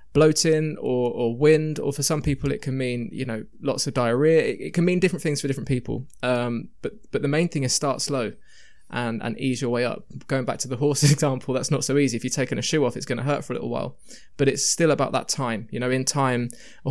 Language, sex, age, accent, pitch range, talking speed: Ukrainian, male, 20-39, British, 125-145 Hz, 265 wpm